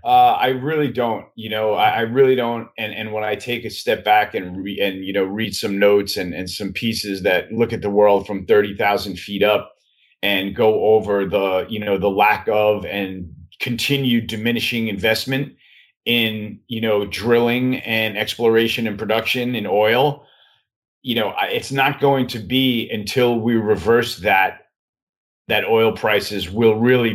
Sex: male